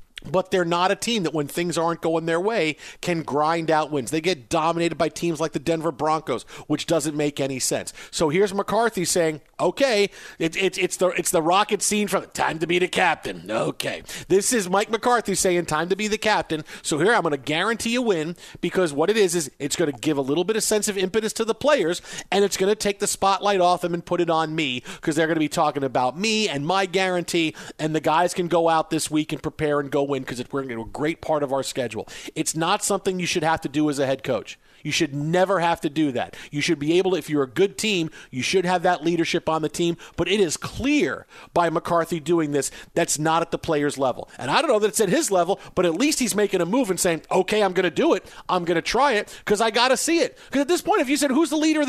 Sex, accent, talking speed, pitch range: male, American, 265 wpm, 155-200 Hz